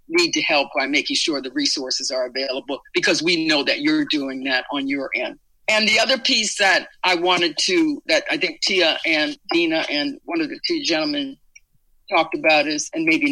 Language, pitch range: English, 185-315 Hz